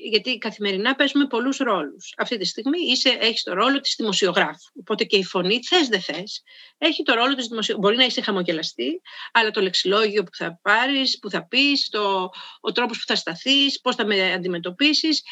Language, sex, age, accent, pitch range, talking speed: Greek, female, 40-59, native, 195-285 Hz, 190 wpm